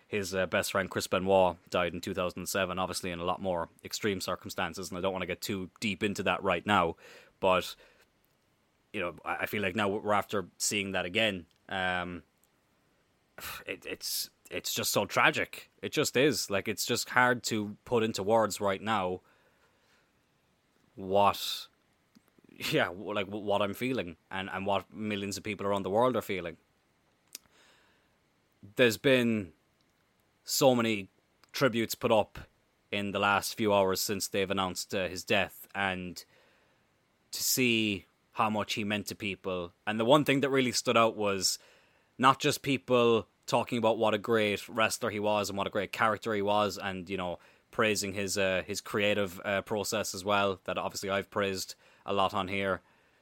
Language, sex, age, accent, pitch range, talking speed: English, male, 20-39, Irish, 95-110 Hz, 170 wpm